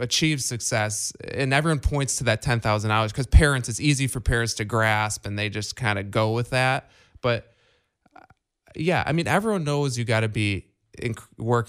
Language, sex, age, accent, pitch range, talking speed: English, male, 20-39, American, 105-130 Hz, 185 wpm